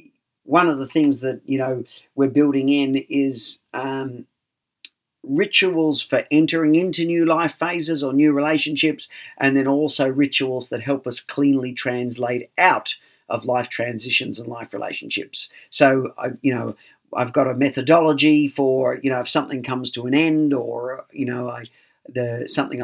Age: 40-59